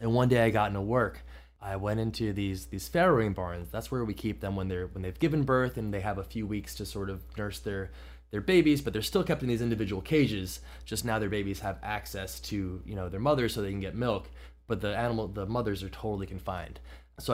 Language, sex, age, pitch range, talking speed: English, male, 20-39, 95-130 Hz, 245 wpm